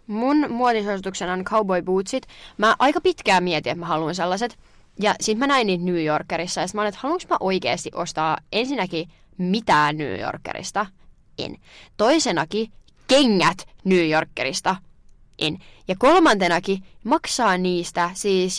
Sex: female